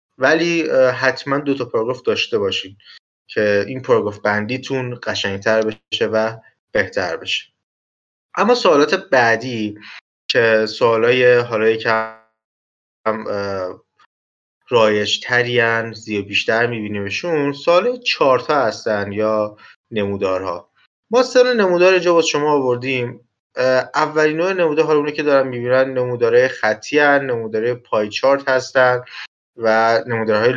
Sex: male